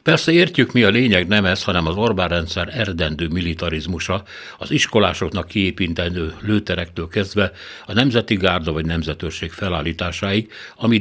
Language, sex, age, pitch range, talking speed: Hungarian, male, 60-79, 85-105 Hz, 135 wpm